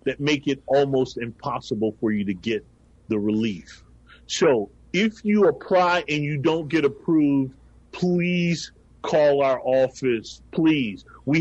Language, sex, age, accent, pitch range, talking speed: English, male, 40-59, American, 135-175 Hz, 135 wpm